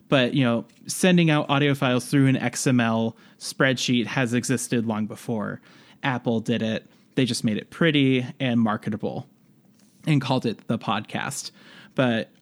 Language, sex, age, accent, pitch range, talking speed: English, male, 20-39, American, 120-150 Hz, 150 wpm